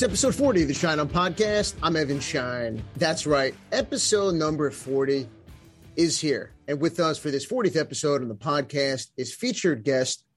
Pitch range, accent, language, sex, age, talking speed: 130-155 Hz, American, English, male, 30-49, 175 wpm